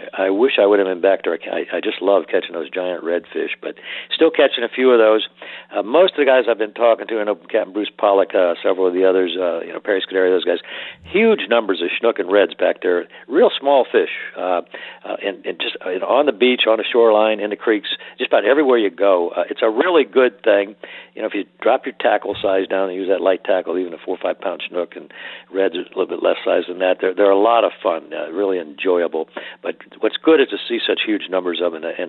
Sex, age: male, 60-79